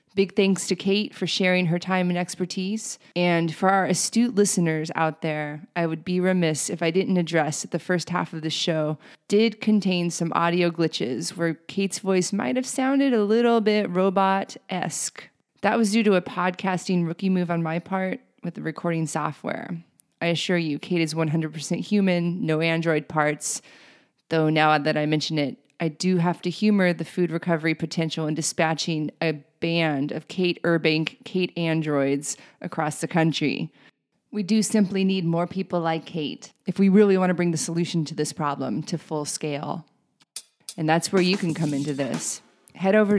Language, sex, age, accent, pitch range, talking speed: English, female, 30-49, American, 160-195 Hz, 180 wpm